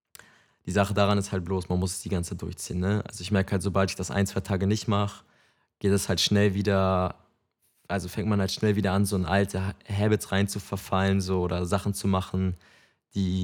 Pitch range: 95-105 Hz